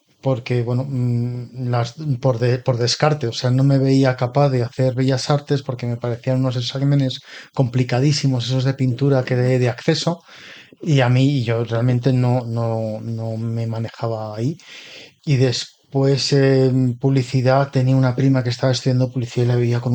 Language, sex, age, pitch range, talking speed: Spanish, male, 30-49, 125-140 Hz, 170 wpm